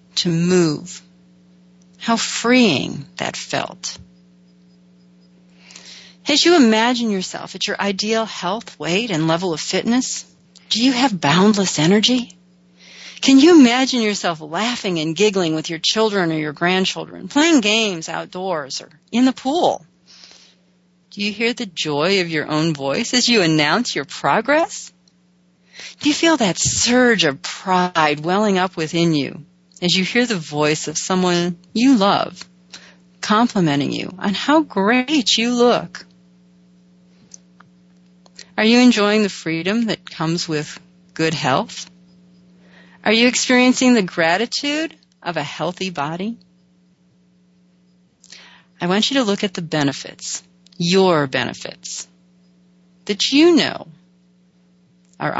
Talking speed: 130 wpm